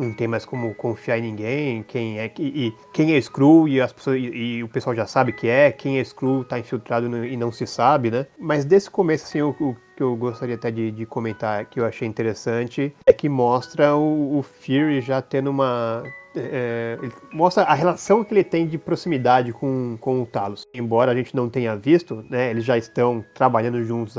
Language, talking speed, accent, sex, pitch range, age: Portuguese, 220 wpm, Brazilian, male, 115-145 Hz, 30-49